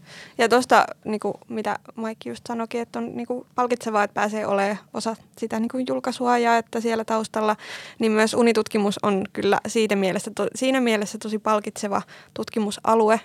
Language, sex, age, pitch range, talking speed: Finnish, female, 20-39, 205-230 Hz, 170 wpm